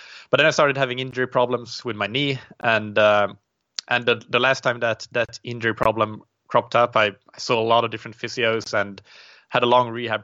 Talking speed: 210 wpm